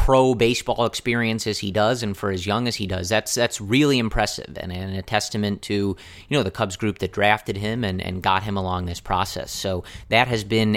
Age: 30-49